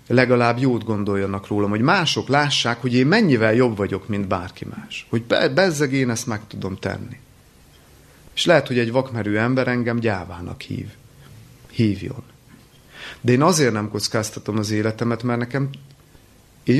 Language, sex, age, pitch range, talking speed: Hungarian, male, 30-49, 100-120 Hz, 150 wpm